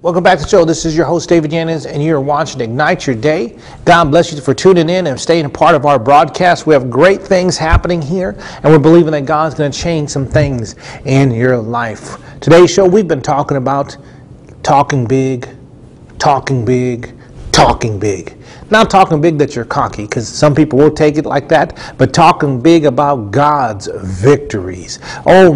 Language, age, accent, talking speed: English, 40-59, American, 195 wpm